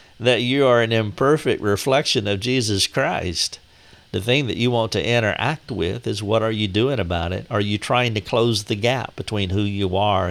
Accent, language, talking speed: American, English, 205 wpm